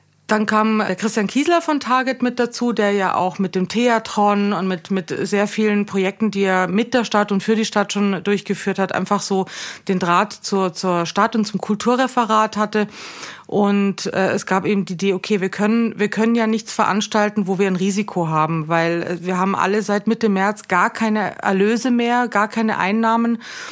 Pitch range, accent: 190-225 Hz, German